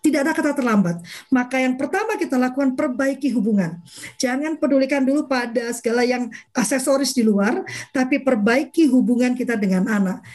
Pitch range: 225-300 Hz